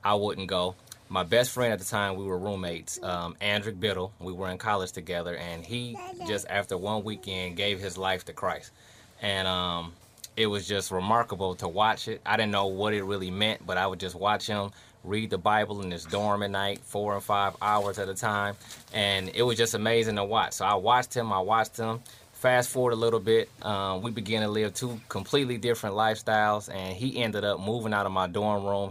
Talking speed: 220 wpm